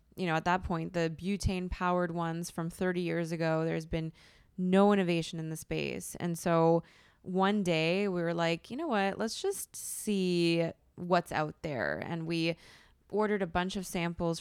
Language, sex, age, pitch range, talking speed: English, female, 20-39, 165-190 Hz, 180 wpm